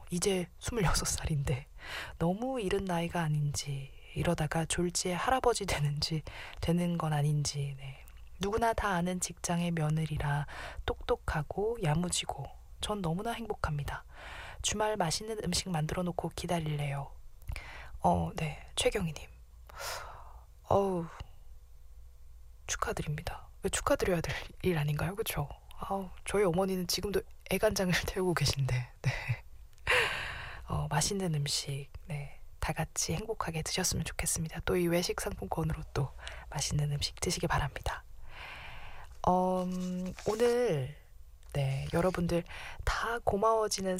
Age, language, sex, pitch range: 20-39, Korean, female, 140-185 Hz